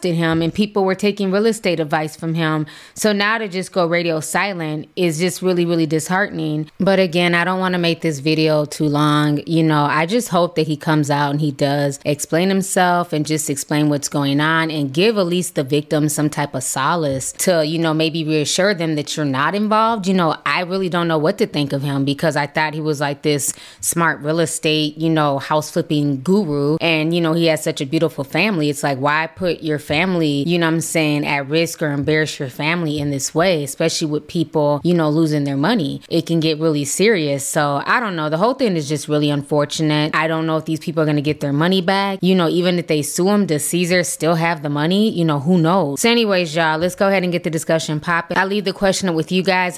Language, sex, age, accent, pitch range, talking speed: English, female, 20-39, American, 150-180 Hz, 240 wpm